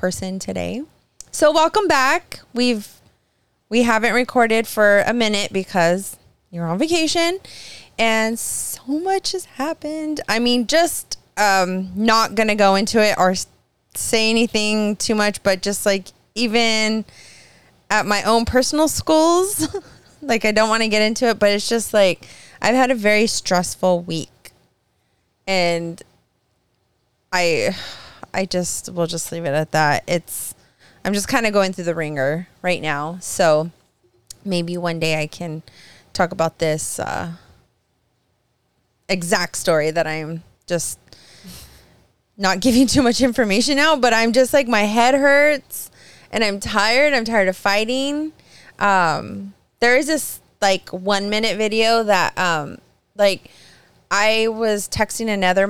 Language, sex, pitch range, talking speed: English, female, 180-240 Hz, 145 wpm